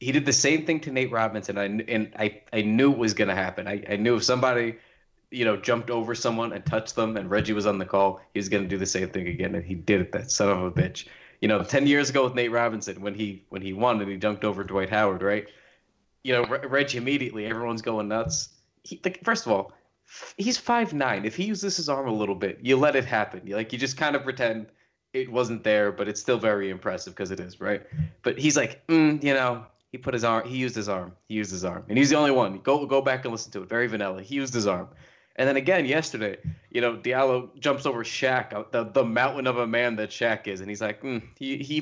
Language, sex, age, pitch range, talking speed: English, male, 20-39, 105-145 Hz, 265 wpm